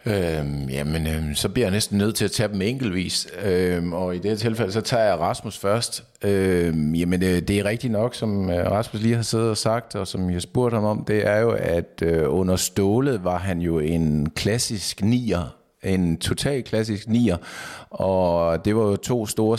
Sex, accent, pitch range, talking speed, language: male, native, 90-115 Hz, 200 wpm, Danish